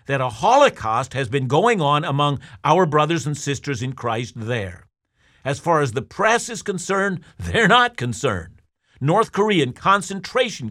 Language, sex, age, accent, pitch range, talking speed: English, male, 50-69, American, 135-195 Hz, 155 wpm